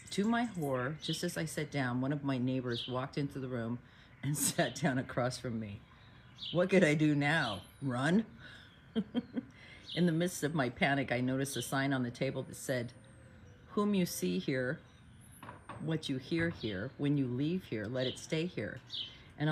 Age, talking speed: 50-69, 185 wpm